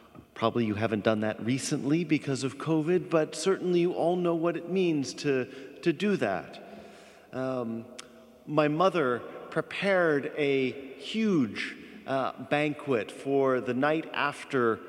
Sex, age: male, 40-59